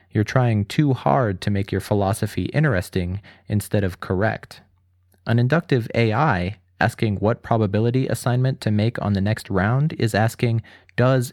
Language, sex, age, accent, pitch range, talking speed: English, male, 30-49, American, 95-120 Hz, 150 wpm